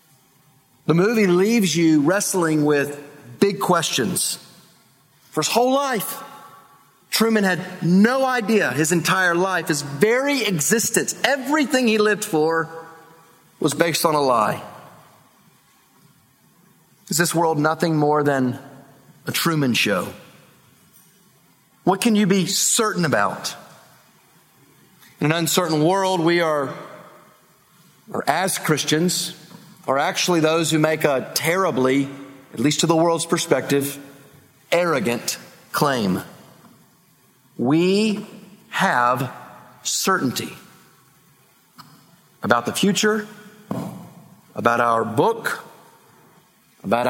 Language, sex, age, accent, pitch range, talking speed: English, male, 40-59, American, 145-195 Hz, 100 wpm